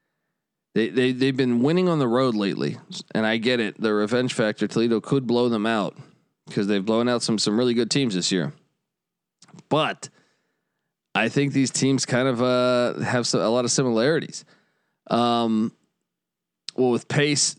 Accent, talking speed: American, 170 wpm